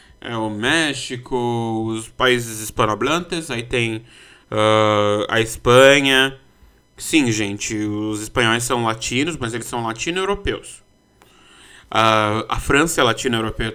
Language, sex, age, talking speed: Portuguese, male, 20-39, 105 wpm